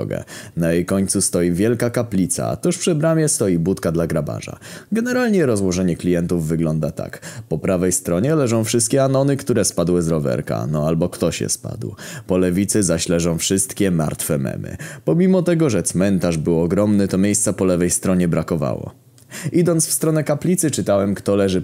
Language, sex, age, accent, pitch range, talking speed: Polish, male, 20-39, native, 85-120 Hz, 165 wpm